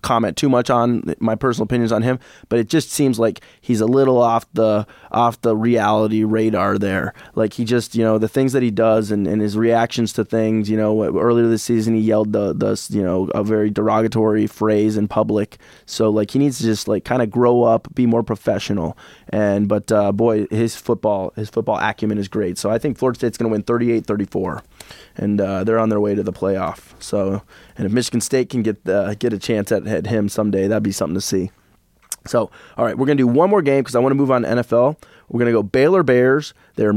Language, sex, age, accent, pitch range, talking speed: English, male, 20-39, American, 110-130 Hz, 235 wpm